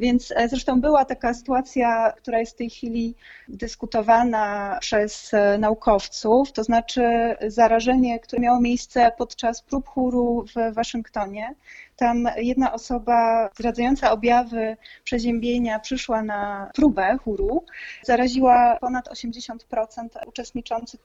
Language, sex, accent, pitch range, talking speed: Polish, female, native, 220-250 Hz, 110 wpm